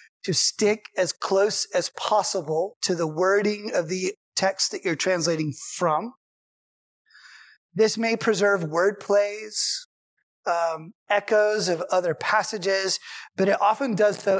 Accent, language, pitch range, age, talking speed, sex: American, English, 180-210 Hz, 30-49, 130 wpm, male